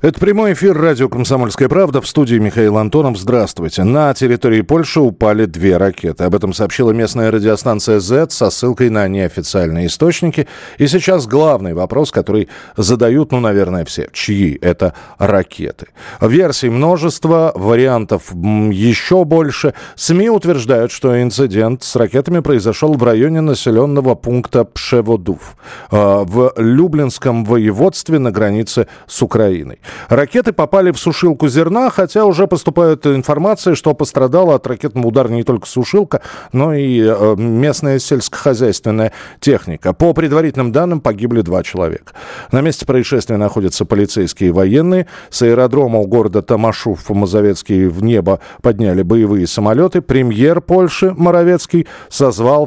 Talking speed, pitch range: 130 wpm, 105-155 Hz